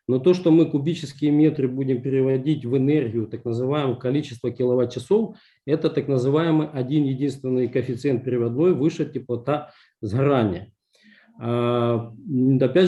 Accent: native